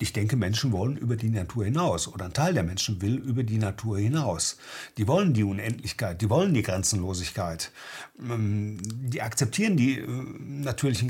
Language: German